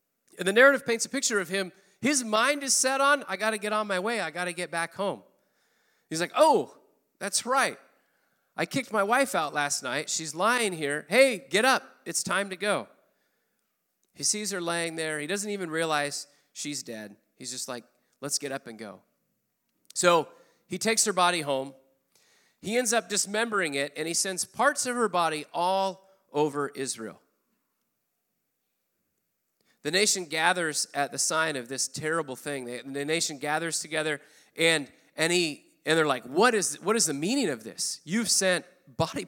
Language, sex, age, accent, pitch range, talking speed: English, male, 40-59, American, 145-210 Hz, 180 wpm